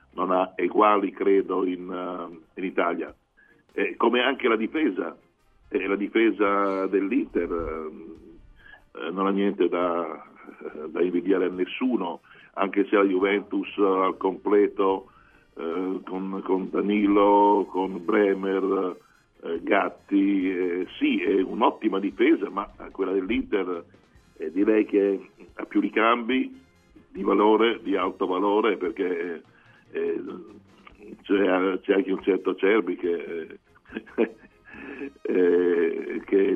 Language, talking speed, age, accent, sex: Italian, 115 wpm, 50-69, native, male